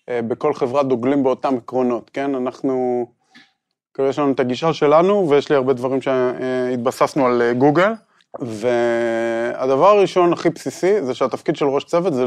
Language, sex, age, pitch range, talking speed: Hebrew, male, 20-39, 125-155 Hz, 145 wpm